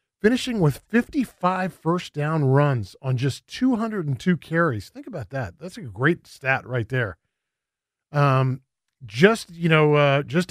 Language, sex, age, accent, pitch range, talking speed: English, male, 40-59, American, 130-175 Hz, 145 wpm